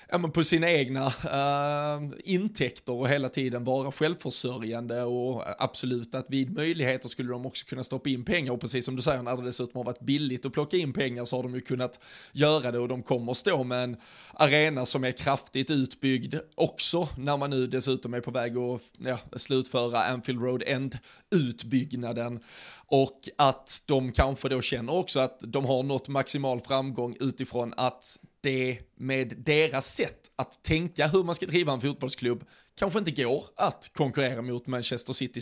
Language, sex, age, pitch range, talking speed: Swedish, male, 20-39, 125-140 Hz, 175 wpm